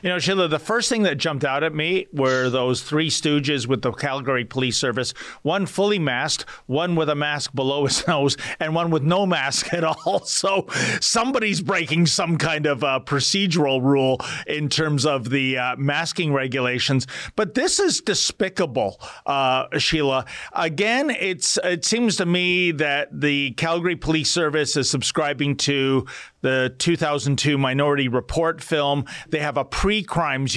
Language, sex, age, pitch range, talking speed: English, male, 40-59, 140-190 Hz, 160 wpm